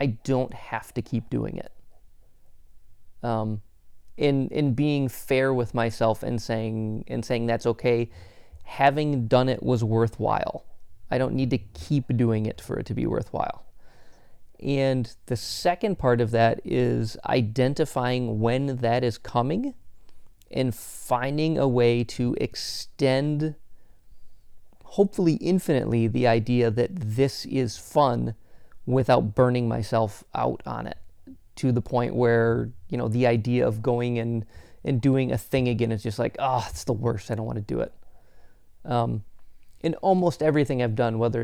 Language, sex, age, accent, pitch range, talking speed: English, male, 30-49, American, 115-130 Hz, 150 wpm